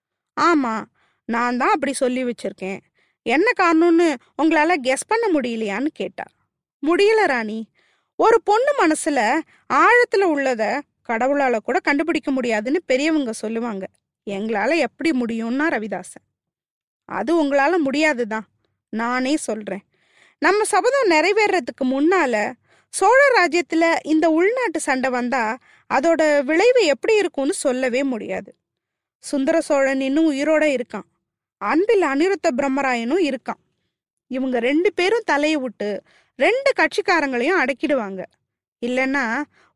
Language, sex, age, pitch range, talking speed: Tamil, female, 20-39, 255-350 Hz, 100 wpm